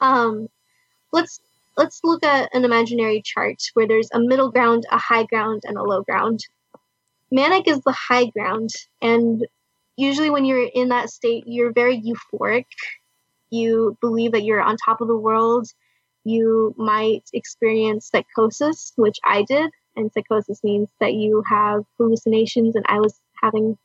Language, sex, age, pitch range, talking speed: English, female, 10-29, 215-245 Hz, 155 wpm